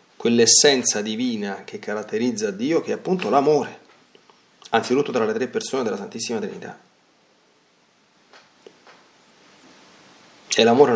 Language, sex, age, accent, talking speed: Italian, male, 30-49, native, 105 wpm